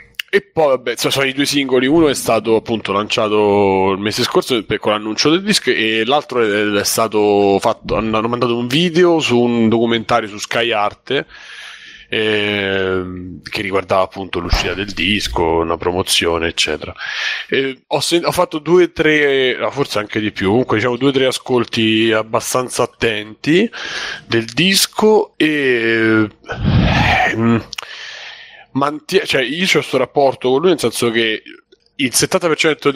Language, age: Italian, 30-49